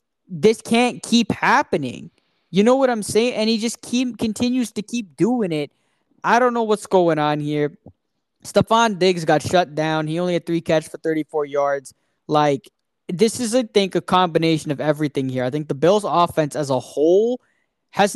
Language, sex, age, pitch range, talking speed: English, male, 10-29, 160-215 Hz, 190 wpm